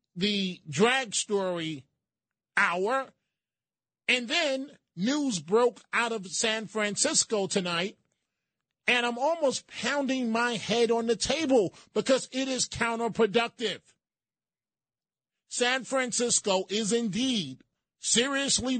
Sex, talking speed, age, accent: male, 100 wpm, 40-59, American